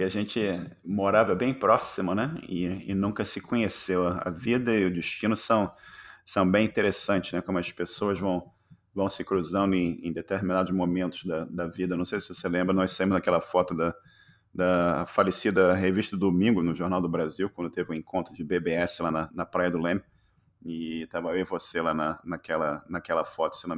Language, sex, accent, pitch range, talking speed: Portuguese, male, Brazilian, 85-95 Hz, 200 wpm